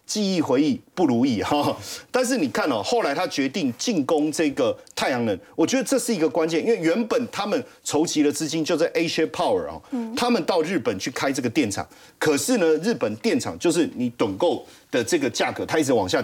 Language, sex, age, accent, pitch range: Chinese, male, 40-59, native, 155-255 Hz